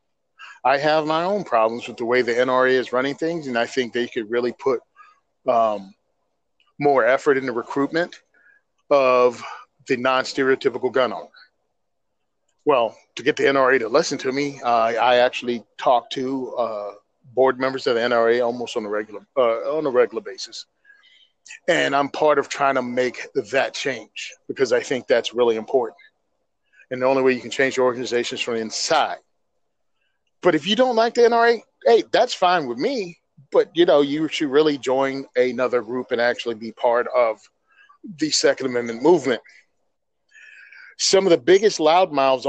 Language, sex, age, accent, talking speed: English, male, 40-59, American, 185 wpm